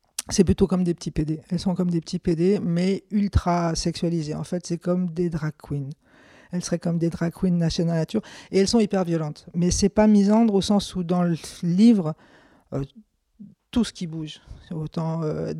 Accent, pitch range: French, 170-195 Hz